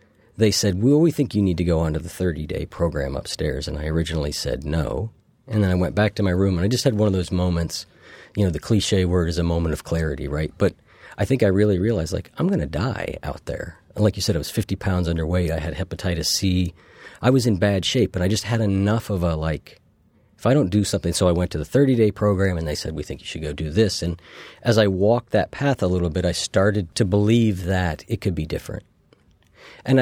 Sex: male